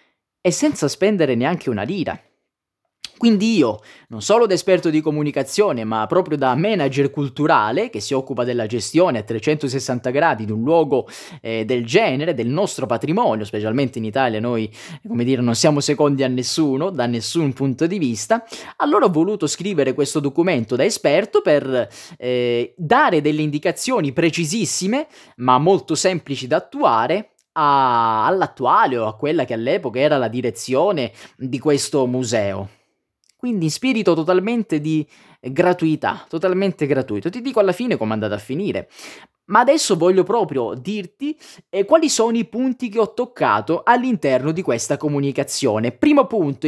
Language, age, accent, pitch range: Italian, 20-39, native, 125-195 Hz